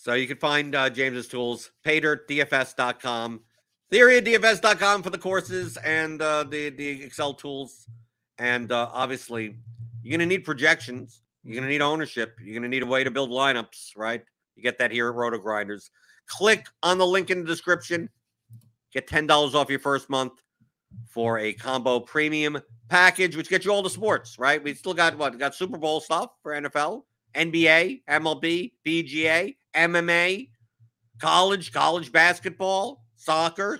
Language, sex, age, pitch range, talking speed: English, male, 50-69, 120-155 Hz, 160 wpm